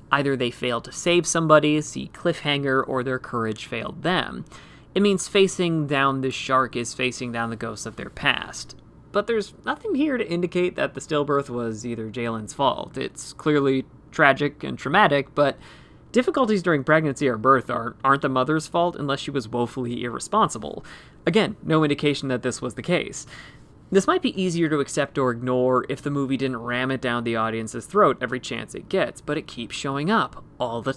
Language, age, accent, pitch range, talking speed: English, 30-49, American, 125-155 Hz, 190 wpm